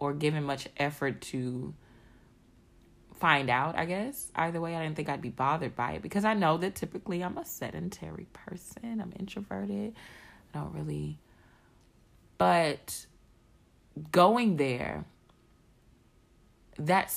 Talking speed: 130 wpm